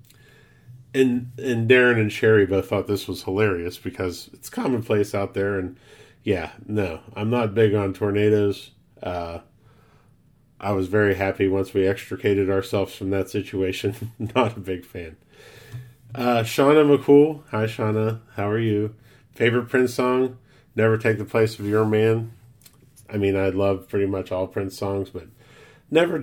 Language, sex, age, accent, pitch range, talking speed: English, male, 40-59, American, 95-120 Hz, 155 wpm